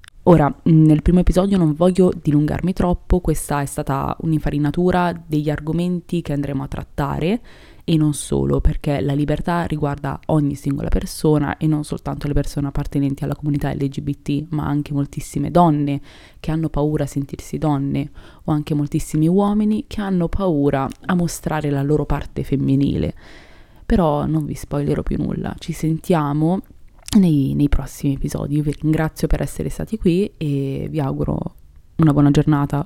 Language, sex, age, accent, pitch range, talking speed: Italian, female, 20-39, native, 140-160 Hz, 155 wpm